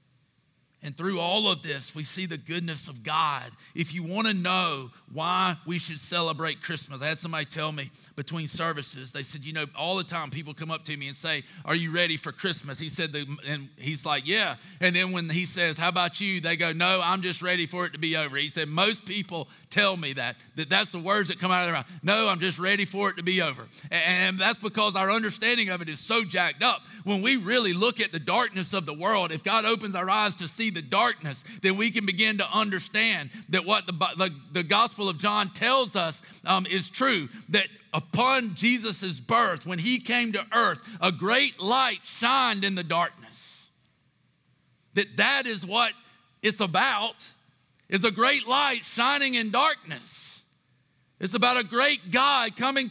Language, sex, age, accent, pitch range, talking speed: English, male, 40-59, American, 160-220 Hz, 205 wpm